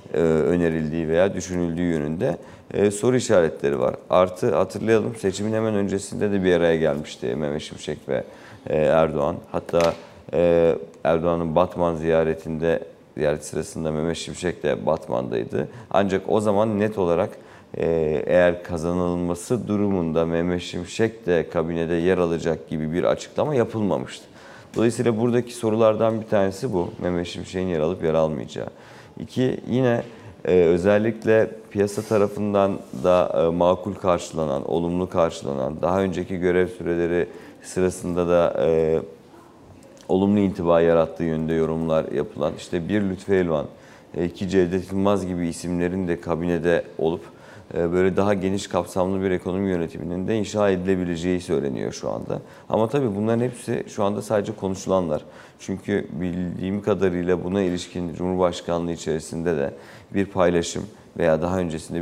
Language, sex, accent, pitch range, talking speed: Turkish, male, native, 85-100 Hz, 130 wpm